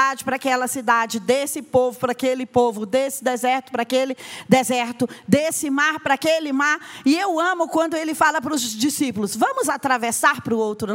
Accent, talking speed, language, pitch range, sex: Brazilian, 175 wpm, Portuguese, 245-325 Hz, female